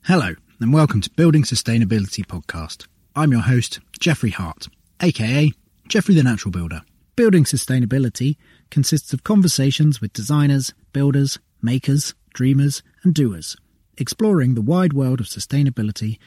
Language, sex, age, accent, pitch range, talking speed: English, male, 30-49, British, 115-160 Hz, 130 wpm